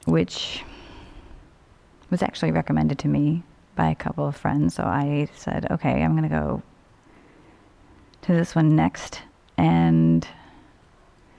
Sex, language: female, English